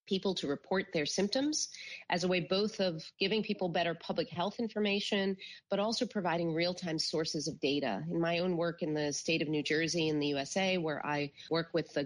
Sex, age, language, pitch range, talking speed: female, 30-49, English, 150-190 Hz, 205 wpm